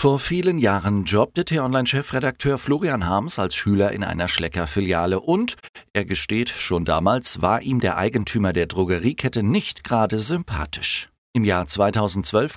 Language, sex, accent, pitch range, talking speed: German, male, German, 90-115 Hz, 145 wpm